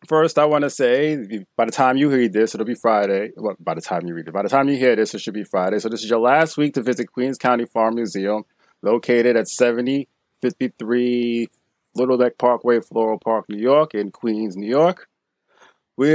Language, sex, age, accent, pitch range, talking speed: English, male, 30-49, American, 110-140 Hz, 215 wpm